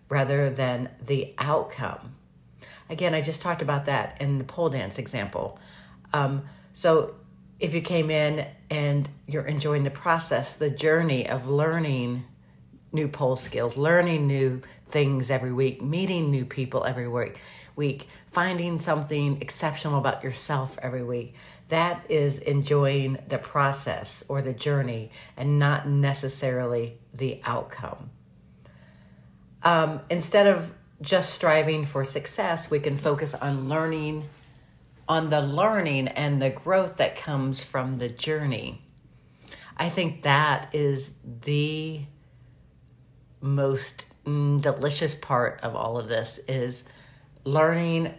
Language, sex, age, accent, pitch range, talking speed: English, female, 50-69, American, 130-150 Hz, 125 wpm